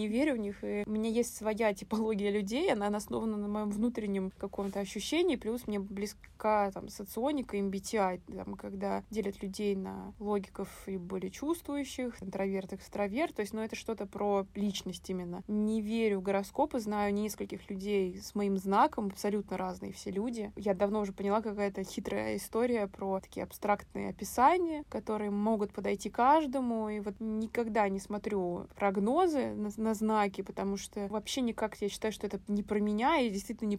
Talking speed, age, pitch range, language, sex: 165 wpm, 20-39, 200-225 Hz, Russian, female